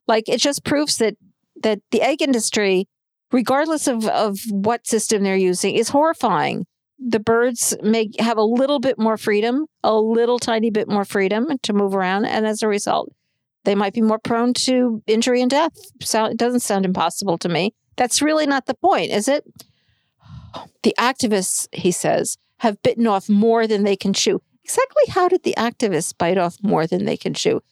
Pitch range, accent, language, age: 200-255 Hz, American, English, 50-69